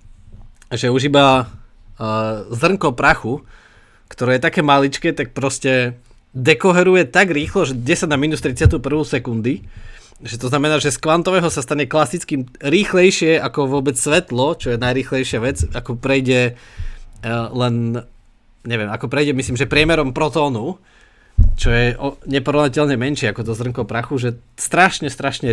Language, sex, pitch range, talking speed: Slovak, male, 115-145 Hz, 135 wpm